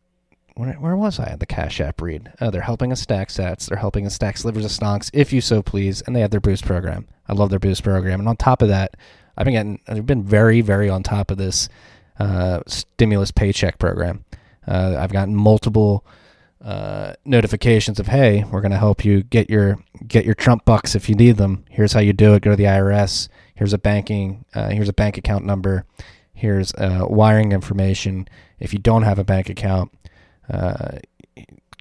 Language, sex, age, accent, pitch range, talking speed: English, male, 20-39, American, 95-110 Hz, 205 wpm